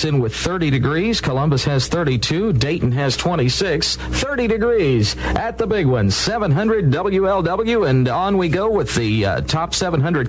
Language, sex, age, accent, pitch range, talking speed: English, male, 50-69, American, 135-205 Hz, 155 wpm